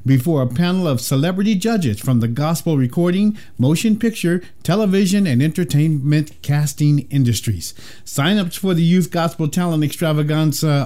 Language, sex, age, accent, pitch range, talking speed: English, male, 50-69, American, 130-180 Hz, 140 wpm